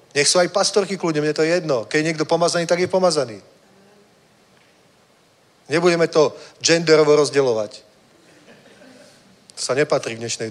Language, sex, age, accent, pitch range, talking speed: Czech, male, 40-59, native, 120-170 Hz, 150 wpm